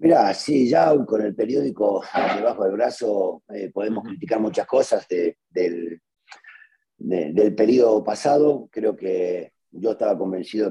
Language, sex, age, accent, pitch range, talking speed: Spanish, male, 40-59, Argentinian, 100-140 Hz, 140 wpm